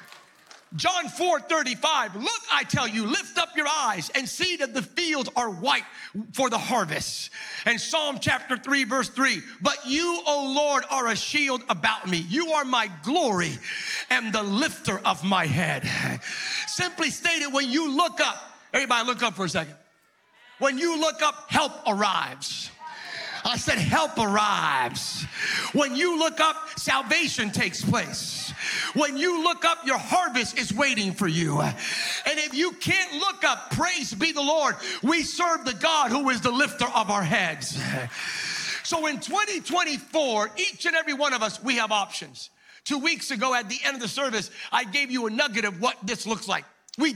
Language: English